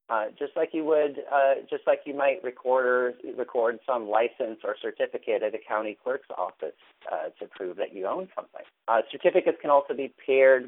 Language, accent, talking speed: English, American, 195 wpm